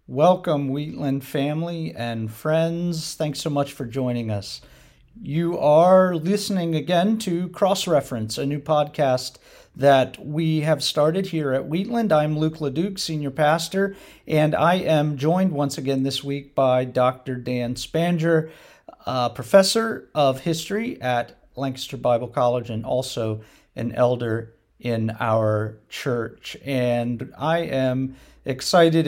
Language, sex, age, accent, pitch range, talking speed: English, male, 50-69, American, 130-165 Hz, 130 wpm